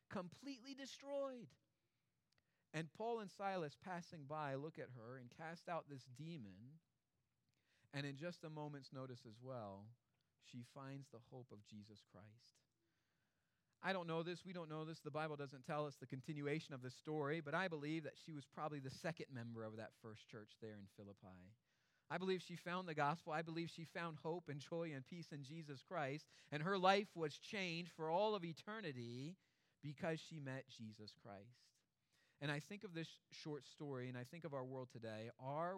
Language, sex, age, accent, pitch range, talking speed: English, male, 40-59, American, 125-165 Hz, 190 wpm